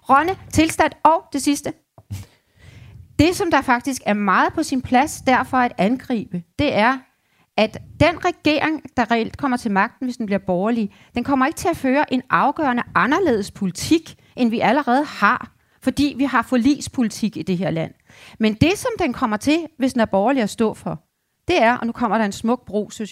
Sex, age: female, 30-49